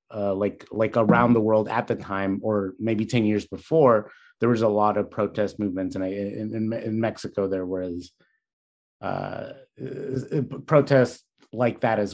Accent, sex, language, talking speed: American, male, English, 170 wpm